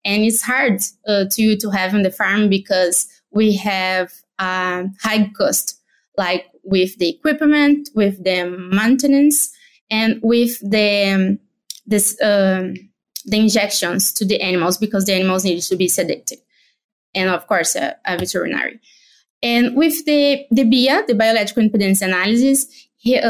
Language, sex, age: English, female, 20-39